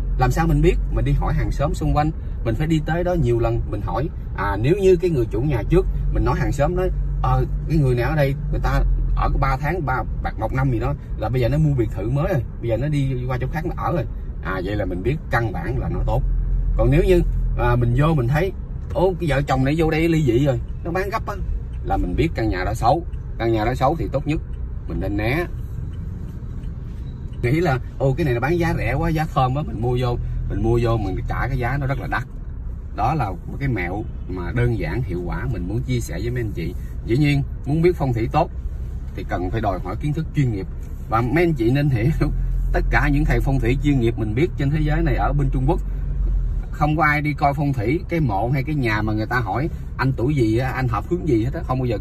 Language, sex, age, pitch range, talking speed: Vietnamese, male, 20-39, 115-150 Hz, 270 wpm